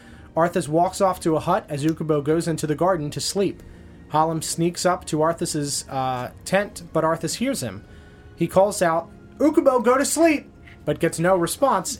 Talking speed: 180 wpm